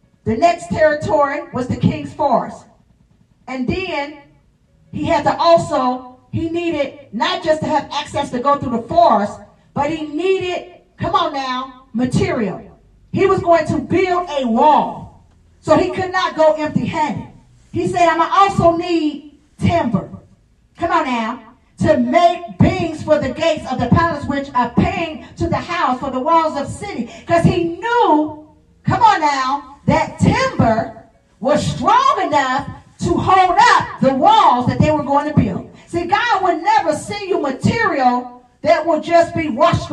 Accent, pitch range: American, 250-335 Hz